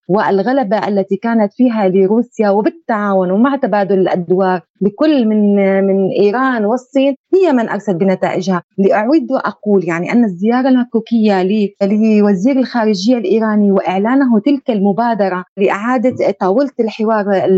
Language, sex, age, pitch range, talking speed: Arabic, female, 30-49, 195-235 Hz, 115 wpm